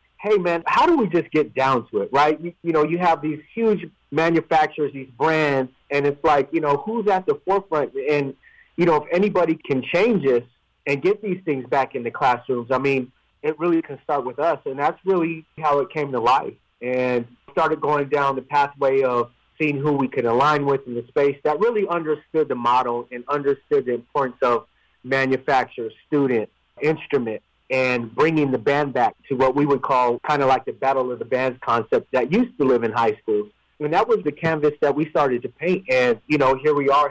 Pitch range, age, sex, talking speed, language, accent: 130-175 Hz, 30-49, male, 215 wpm, English, American